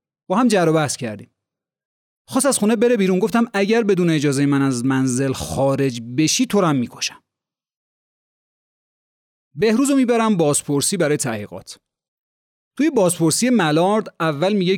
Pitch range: 140-210 Hz